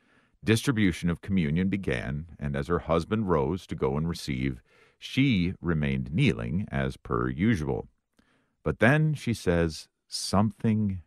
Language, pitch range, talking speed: English, 75-95 Hz, 130 wpm